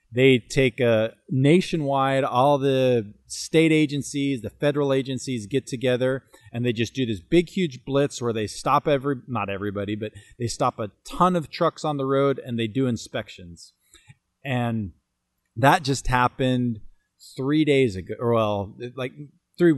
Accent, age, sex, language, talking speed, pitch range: American, 30-49, male, English, 160 wpm, 110-140 Hz